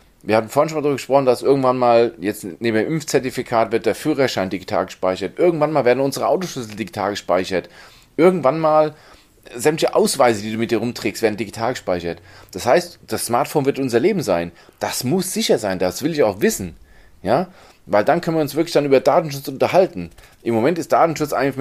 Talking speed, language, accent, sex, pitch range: 195 wpm, German, German, male, 100-140 Hz